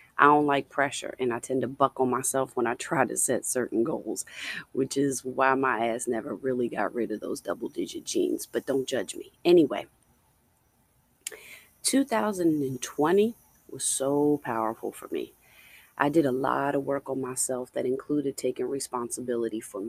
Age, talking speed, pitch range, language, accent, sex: 30-49, 165 wpm, 130-180 Hz, English, American, female